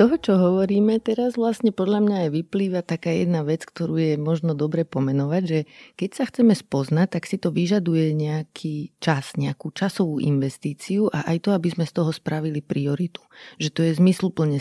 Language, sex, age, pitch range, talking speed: Slovak, female, 30-49, 150-180 Hz, 180 wpm